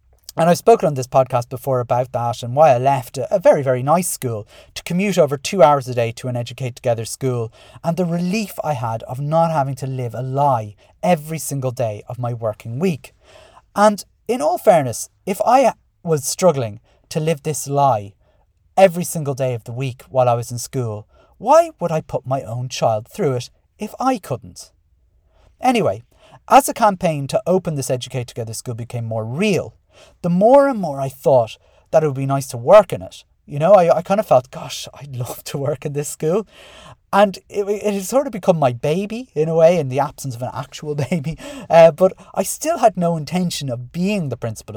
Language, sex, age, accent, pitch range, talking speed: English, male, 40-59, British, 120-175 Hz, 210 wpm